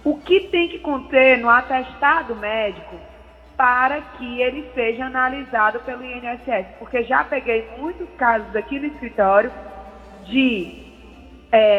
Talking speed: 120 wpm